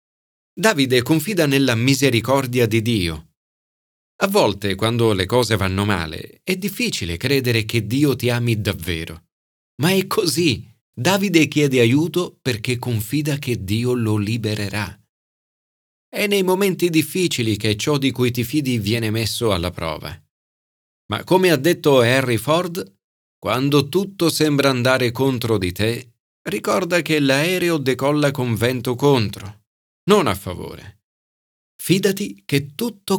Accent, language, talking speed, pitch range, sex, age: native, Italian, 130 wpm, 100-140 Hz, male, 40-59